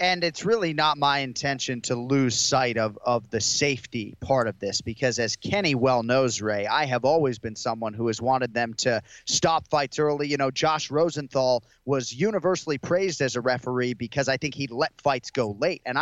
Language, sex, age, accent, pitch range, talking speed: English, male, 30-49, American, 130-170 Hz, 200 wpm